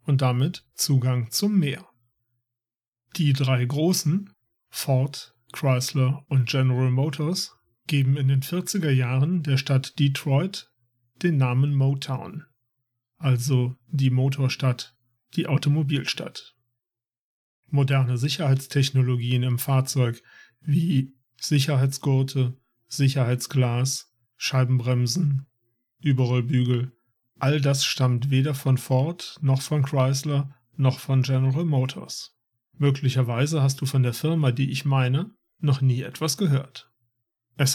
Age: 40-59